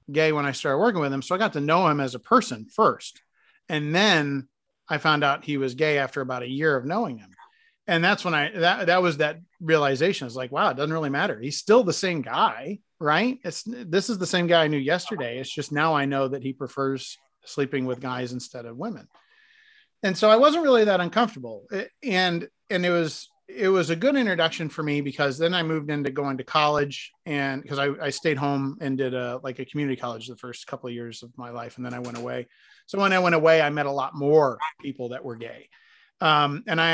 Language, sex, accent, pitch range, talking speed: English, male, American, 135-175 Hz, 240 wpm